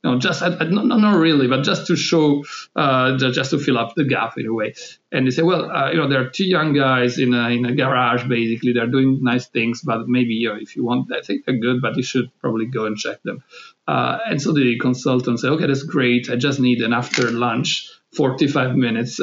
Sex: male